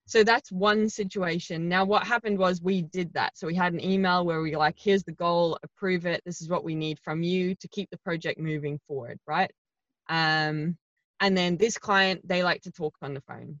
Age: 20-39